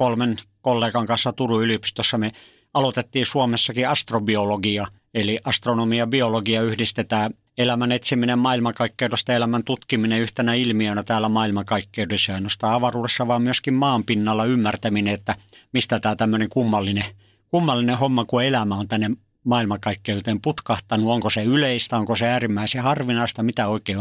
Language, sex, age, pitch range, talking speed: Finnish, male, 50-69, 110-125 Hz, 130 wpm